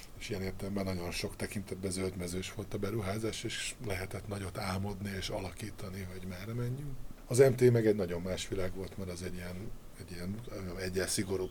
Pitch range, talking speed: 90-110 Hz, 165 wpm